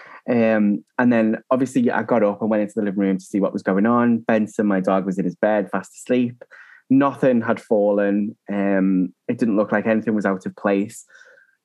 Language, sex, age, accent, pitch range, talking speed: English, male, 20-39, British, 105-130 Hz, 210 wpm